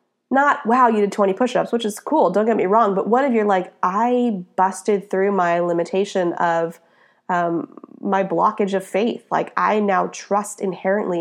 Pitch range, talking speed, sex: 180-230 Hz, 185 wpm, female